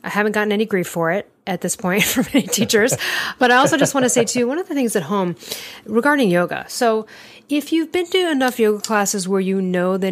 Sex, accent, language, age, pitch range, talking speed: female, American, English, 40-59, 180-220 Hz, 245 wpm